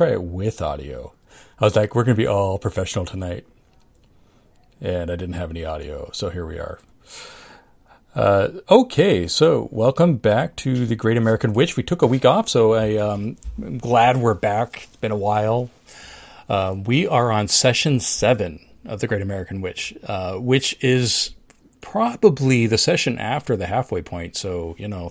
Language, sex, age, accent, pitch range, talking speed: English, male, 40-59, American, 100-135 Hz, 170 wpm